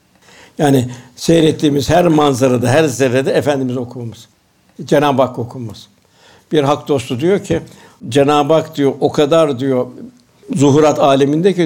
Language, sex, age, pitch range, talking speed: Turkish, male, 60-79, 120-155 Hz, 130 wpm